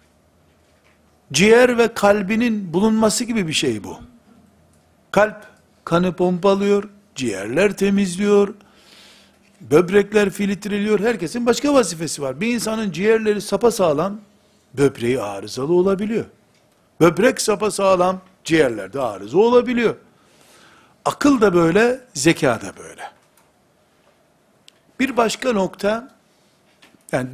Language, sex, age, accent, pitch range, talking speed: Turkish, male, 60-79, native, 150-215 Hz, 95 wpm